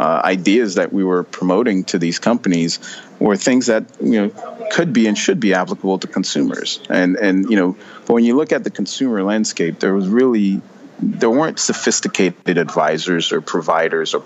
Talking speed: 185 wpm